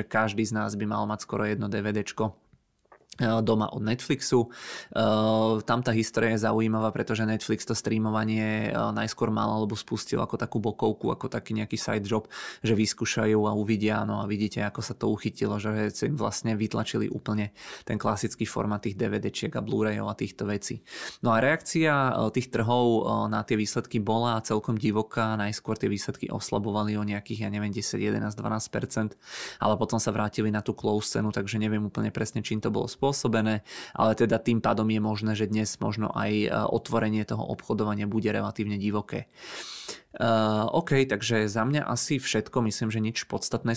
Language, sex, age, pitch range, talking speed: Czech, male, 20-39, 105-115 Hz, 170 wpm